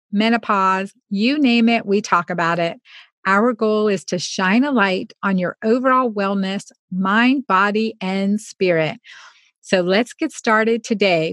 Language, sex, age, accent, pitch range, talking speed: English, female, 50-69, American, 190-230 Hz, 150 wpm